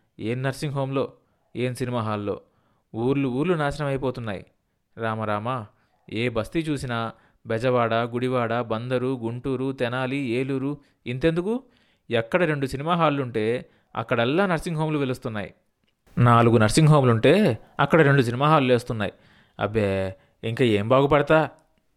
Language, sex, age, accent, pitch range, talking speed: Telugu, male, 20-39, native, 110-150 Hz, 115 wpm